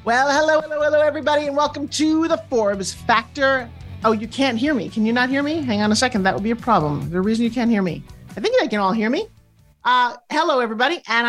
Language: English